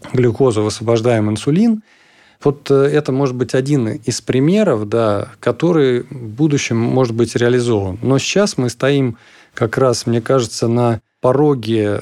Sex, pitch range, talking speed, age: male, 110-135 Hz, 135 wpm, 20-39